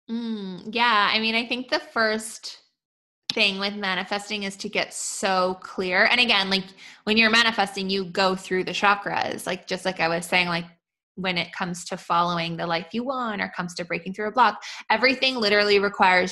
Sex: female